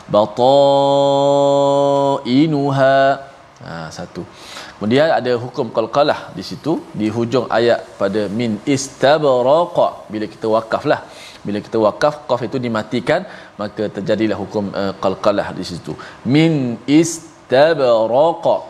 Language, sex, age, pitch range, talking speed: Malayalam, male, 20-39, 105-145 Hz, 110 wpm